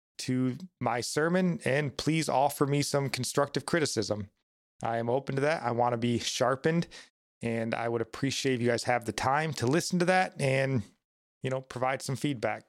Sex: male